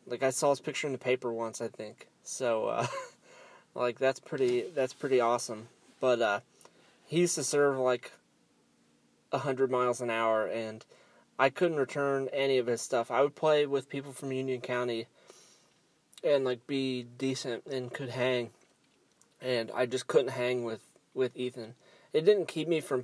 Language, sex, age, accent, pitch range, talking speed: English, male, 20-39, American, 125-145 Hz, 175 wpm